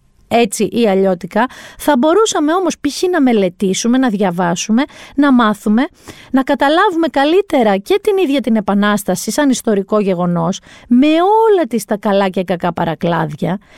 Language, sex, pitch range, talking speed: Greek, female, 200-300 Hz, 140 wpm